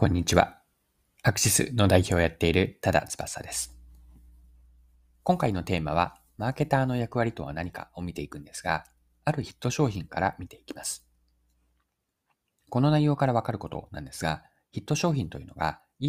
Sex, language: male, Japanese